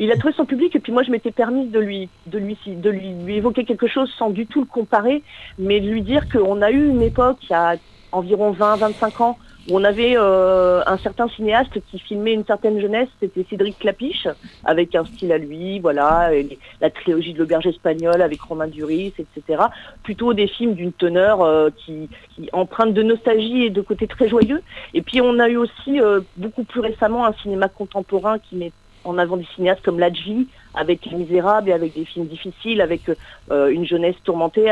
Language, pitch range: French, 180-230 Hz